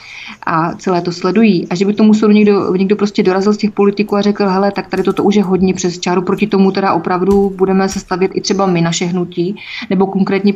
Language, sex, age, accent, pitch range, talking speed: Czech, female, 30-49, native, 180-205 Hz, 225 wpm